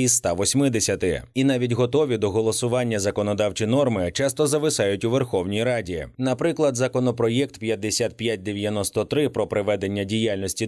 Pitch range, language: 105-135 Hz, Ukrainian